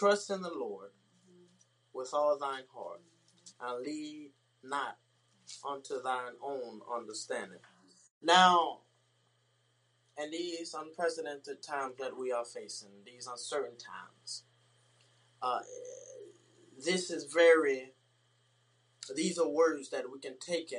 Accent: American